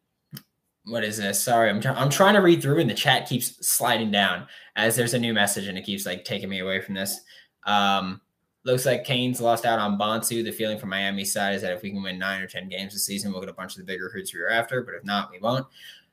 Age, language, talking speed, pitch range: 20-39, English, 270 wpm, 100-150 Hz